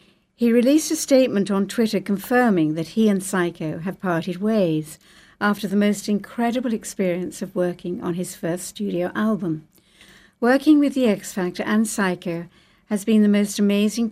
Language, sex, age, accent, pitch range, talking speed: English, female, 60-79, British, 175-210 Hz, 160 wpm